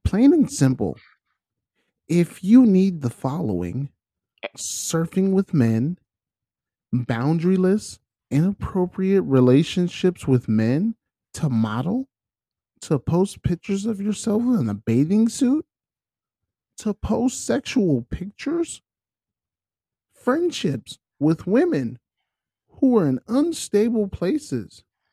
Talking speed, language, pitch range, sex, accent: 95 wpm, English, 125-200 Hz, male, American